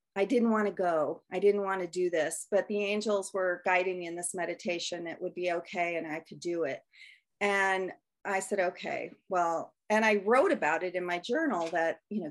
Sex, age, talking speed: female, 40-59, 220 wpm